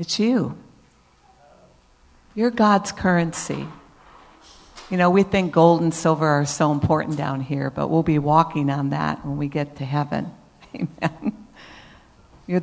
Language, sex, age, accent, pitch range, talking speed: English, female, 50-69, American, 150-185 Hz, 145 wpm